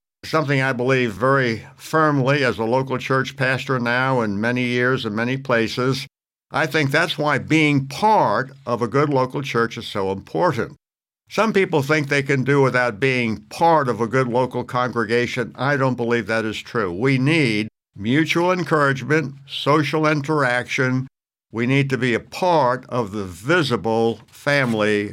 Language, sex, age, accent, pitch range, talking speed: English, male, 60-79, American, 115-135 Hz, 160 wpm